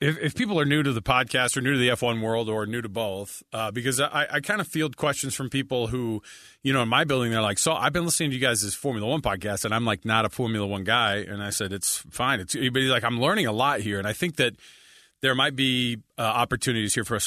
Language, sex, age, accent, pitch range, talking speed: English, male, 40-59, American, 110-140 Hz, 270 wpm